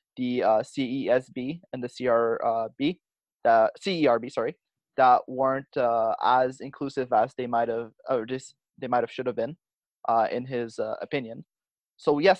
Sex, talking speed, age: male, 160 wpm, 20-39